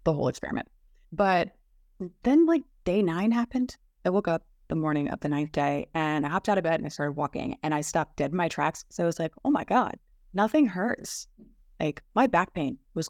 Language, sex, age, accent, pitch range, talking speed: English, female, 20-39, American, 155-205 Hz, 225 wpm